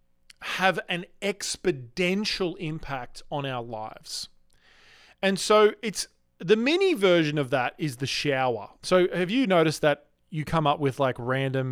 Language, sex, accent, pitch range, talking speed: English, male, Australian, 130-185 Hz, 150 wpm